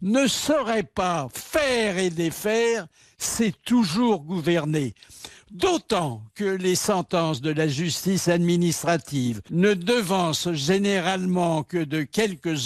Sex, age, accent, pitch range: male, 60-79, French, 160-210 Hz